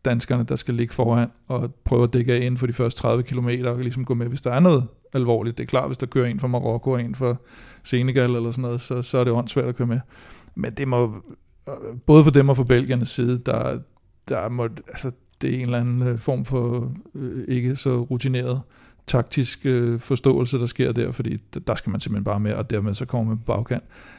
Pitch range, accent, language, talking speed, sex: 120-135 Hz, native, Danish, 225 wpm, male